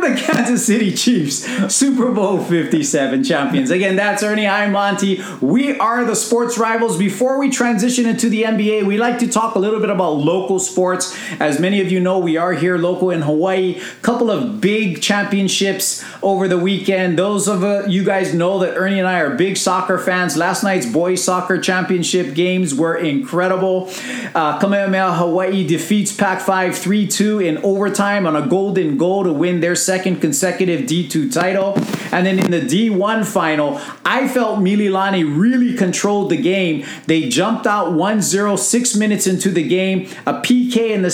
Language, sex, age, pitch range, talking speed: English, male, 30-49, 175-210 Hz, 175 wpm